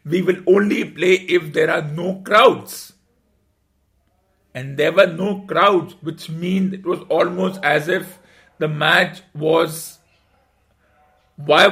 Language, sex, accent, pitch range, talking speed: English, male, Indian, 150-180 Hz, 130 wpm